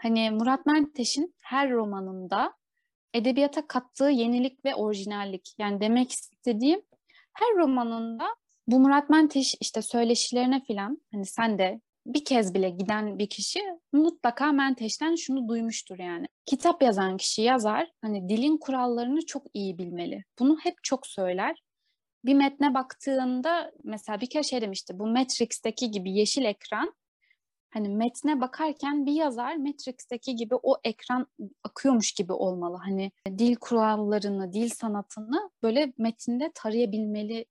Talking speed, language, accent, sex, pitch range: 130 wpm, Turkish, native, female, 215-290 Hz